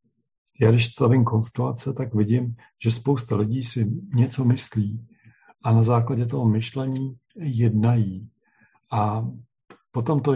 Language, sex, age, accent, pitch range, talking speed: Czech, male, 50-69, native, 110-125 Hz, 120 wpm